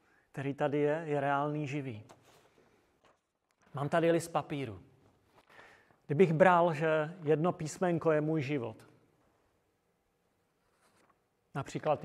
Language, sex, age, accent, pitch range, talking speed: Czech, male, 30-49, native, 135-165 Hz, 95 wpm